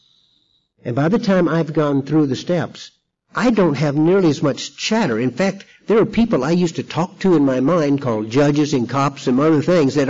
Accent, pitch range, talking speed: American, 125-165 Hz, 220 wpm